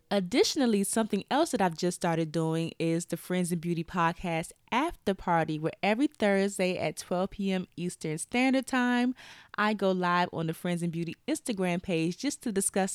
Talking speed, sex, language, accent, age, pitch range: 180 wpm, female, English, American, 20-39, 170-215 Hz